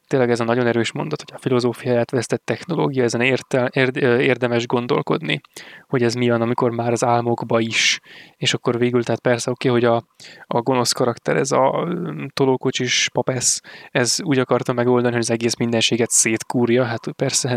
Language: Hungarian